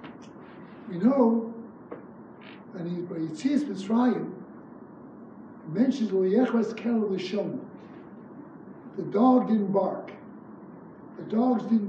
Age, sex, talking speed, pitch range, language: 60-79, male, 100 wpm, 195-255 Hz, English